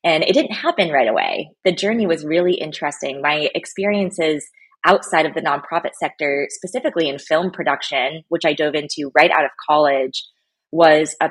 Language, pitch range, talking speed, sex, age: English, 145-185 Hz, 170 wpm, female, 20-39